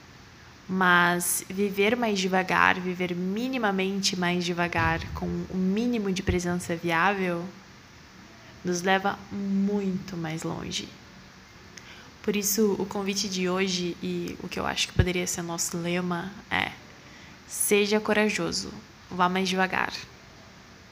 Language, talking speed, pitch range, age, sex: Portuguese, 120 wpm, 180-210 Hz, 10-29, female